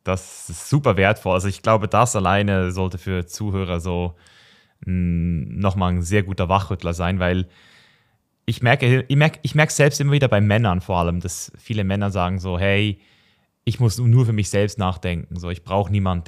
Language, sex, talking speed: German, male, 180 wpm